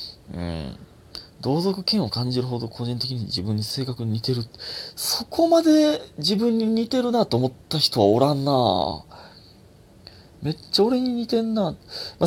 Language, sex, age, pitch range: Japanese, male, 30-49, 95-145 Hz